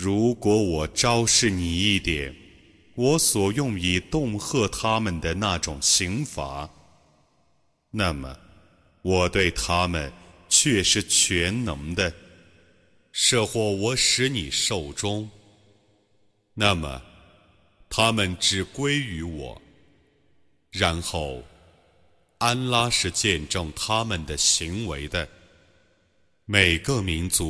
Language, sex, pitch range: Arabic, male, 80-105 Hz